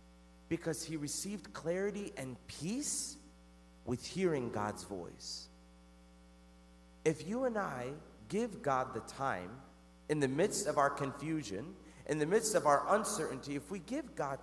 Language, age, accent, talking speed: English, 40-59, American, 140 wpm